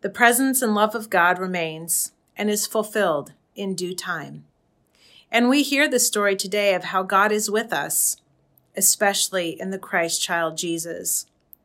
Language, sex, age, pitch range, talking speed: English, female, 40-59, 185-230 Hz, 160 wpm